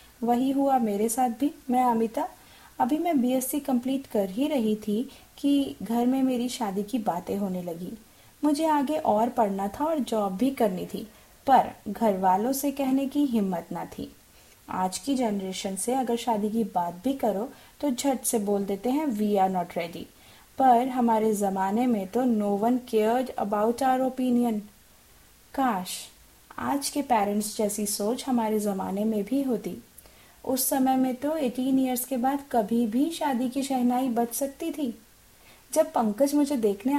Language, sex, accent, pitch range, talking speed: Hindi, female, native, 210-270 Hz, 170 wpm